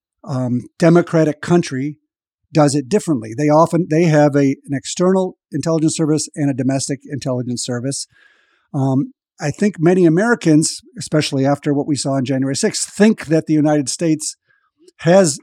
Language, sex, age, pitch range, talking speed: English, male, 50-69, 140-165 Hz, 150 wpm